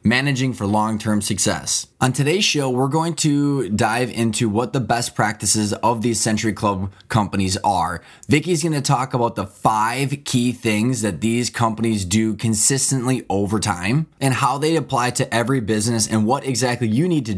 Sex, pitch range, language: male, 110-130 Hz, English